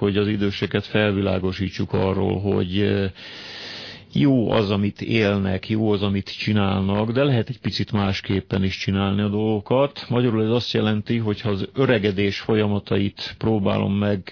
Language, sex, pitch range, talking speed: Hungarian, male, 100-110 Hz, 145 wpm